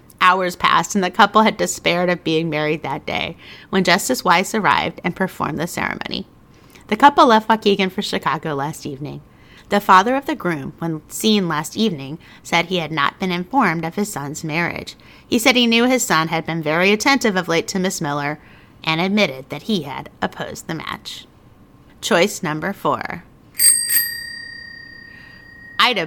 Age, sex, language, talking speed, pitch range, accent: 30-49, female, English, 170 wpm, 165-225 Hz, American